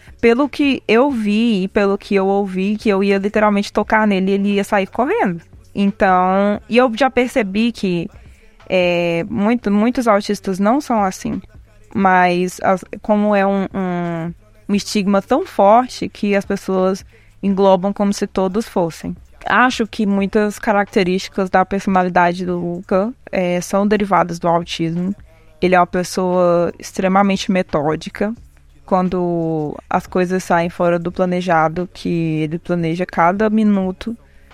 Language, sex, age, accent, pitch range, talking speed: Portuguese, female, 20-39, Brazilian, 175-205 Hz, 140 wpm